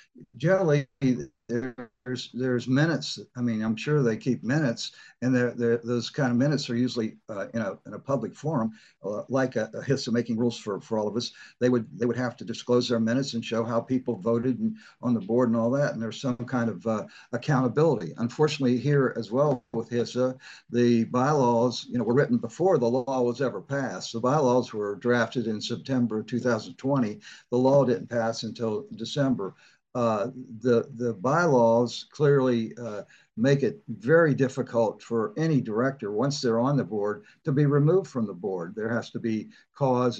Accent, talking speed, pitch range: American, 190 wpm, 115-130 Hz